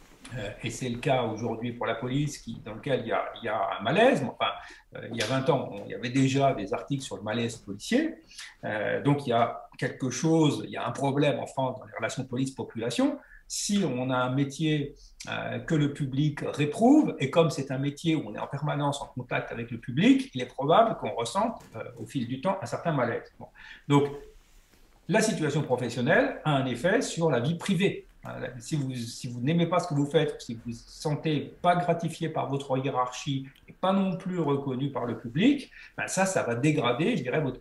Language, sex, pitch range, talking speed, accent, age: French, male, 125-165 Hz, 210 wpm, French, 50-69